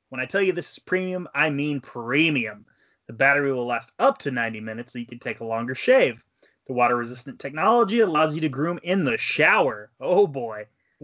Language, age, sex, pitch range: English, 20-39, male, 130-180 Hz